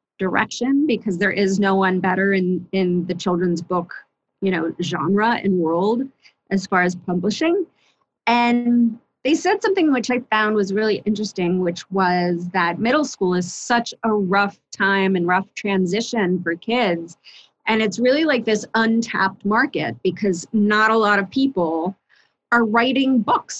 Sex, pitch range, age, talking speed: female, 190-235 Hz, 30-49, 160 wpm